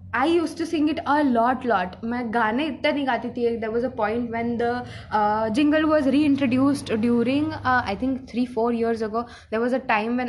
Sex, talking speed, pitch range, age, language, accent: female, 210 wpm, 215-255 Hz, 10-29, Hindi, native